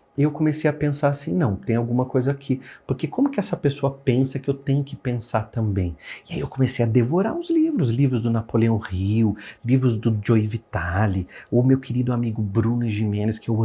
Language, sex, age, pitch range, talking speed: Portuguese, male, 40-59, 110-150 Hz, 205 wpm